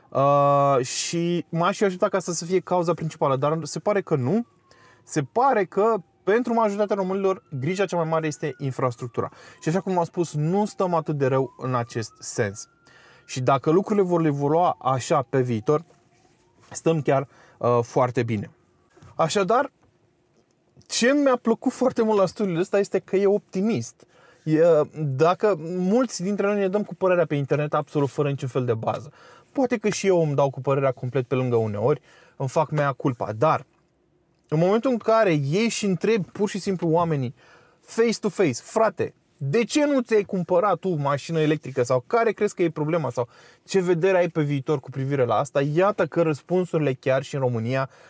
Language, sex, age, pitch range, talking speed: Romanian, male, 20-39, 140-195 Hz, 180 wpm